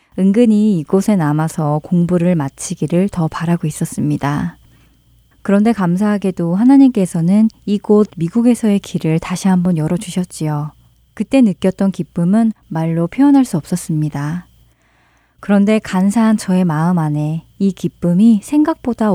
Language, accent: Korean, native